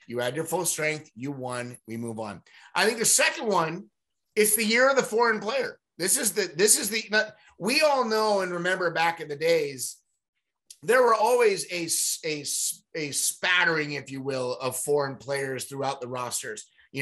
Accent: American